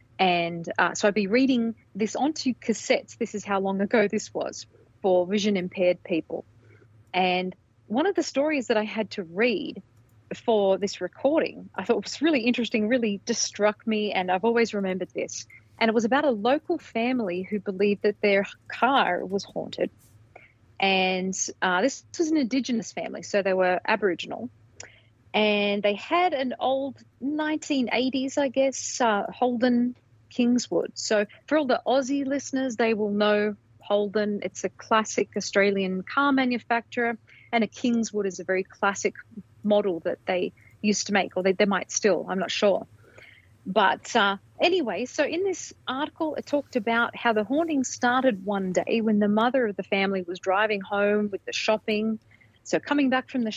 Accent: Australian